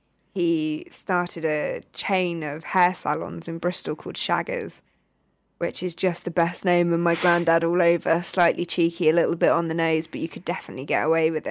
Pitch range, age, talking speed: 170-185 Hz, 20-39, 195 wpm